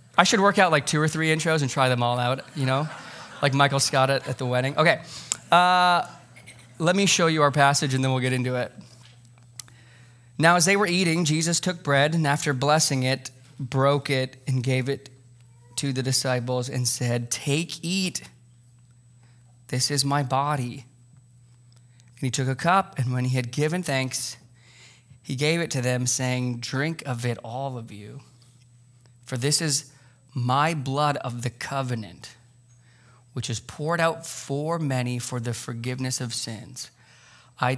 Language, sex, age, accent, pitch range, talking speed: English, male, 20-39, American, 120-140 Hz, 170 wpm